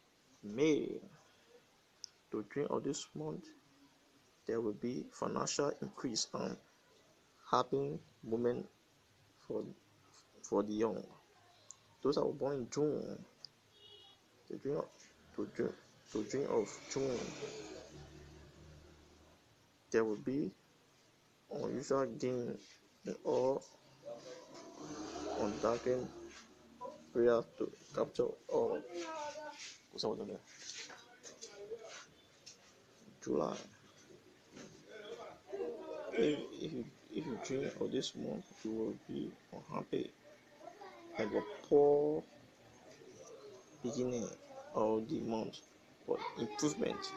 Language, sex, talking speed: English, male, 80 wpm